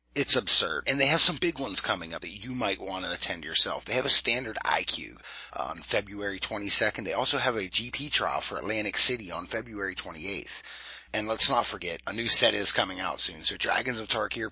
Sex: male